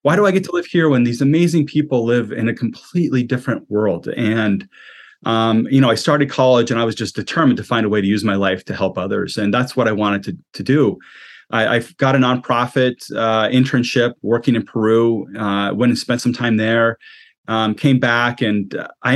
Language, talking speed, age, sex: English, 220 wpm, 30-49, male